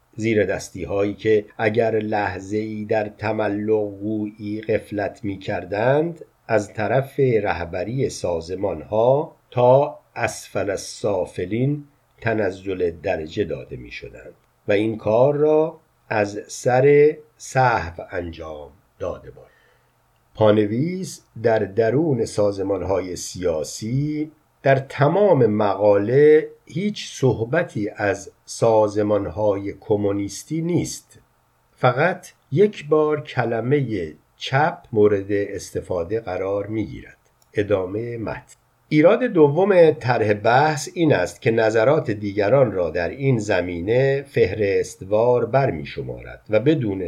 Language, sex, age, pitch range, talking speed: Persian, male, 50-69, 105-135 Hz, 100 wpm